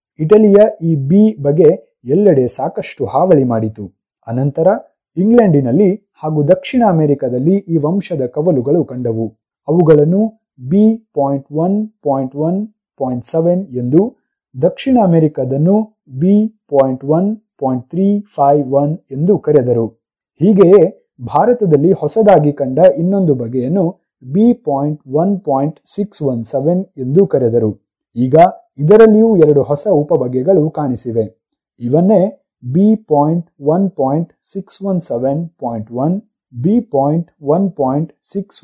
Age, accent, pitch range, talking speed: 30-49, native, 135-195 Hz, 75 wpm